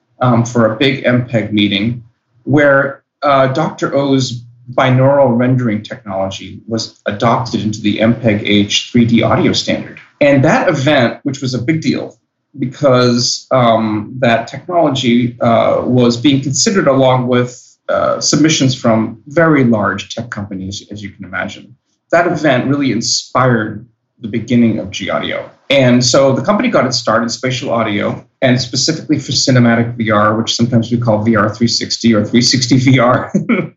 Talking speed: 145 wpm